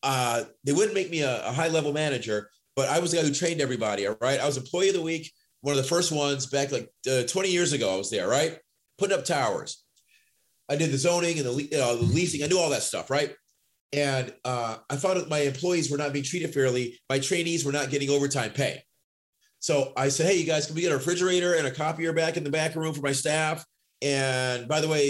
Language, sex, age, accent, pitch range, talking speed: English, male, 30-49, American, 135-170 Hz, 245 wpm